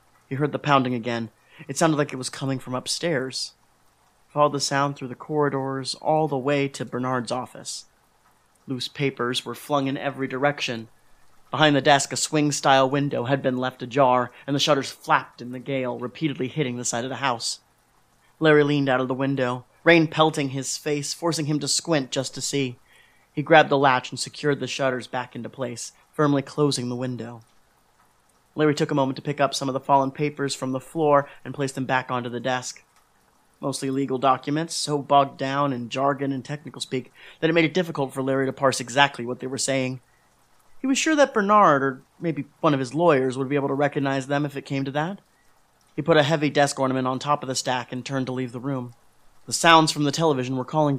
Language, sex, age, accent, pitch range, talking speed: English, male, 30-49, American, 130-150 Hz, 215 wpm